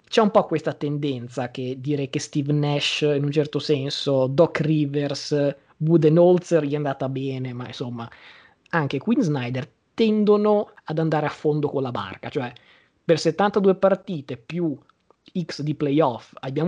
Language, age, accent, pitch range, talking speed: Italian, 20-39, native, 140-170 Hz, 155 wpm